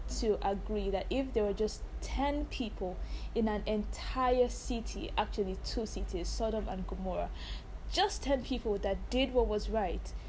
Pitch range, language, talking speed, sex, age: 190-220 Hz, English, 155 wpm, female, 10-29